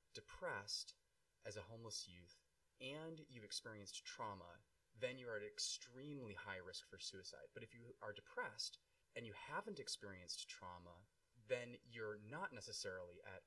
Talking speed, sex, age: 145 wpm, male, 20-39